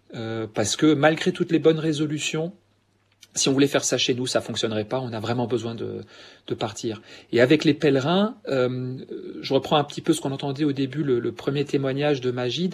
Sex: male